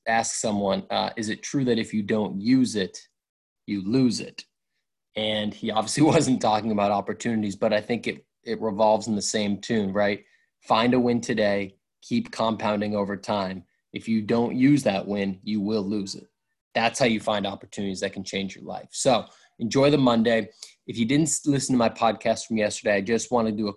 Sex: male